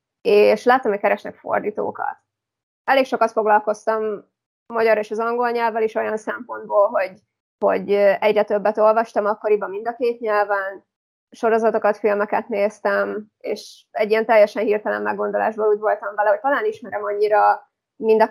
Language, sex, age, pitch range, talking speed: Hungarian, female, 20-39, 205-235 Hz, 150 wpm